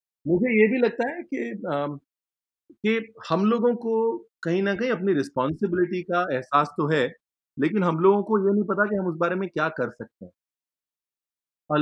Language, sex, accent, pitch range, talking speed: Hindi, male, native, 150-195 Hz, 190 wpm